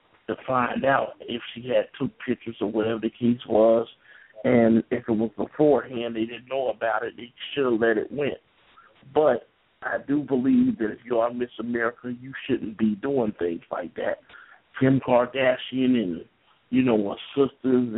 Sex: male